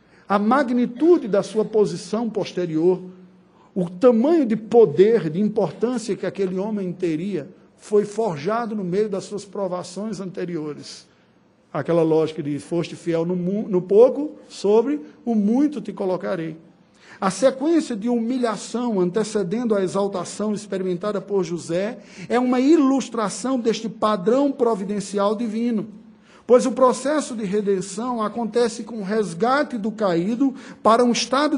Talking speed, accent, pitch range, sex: 130 wpm, Brazilian, 195-250 Hz, male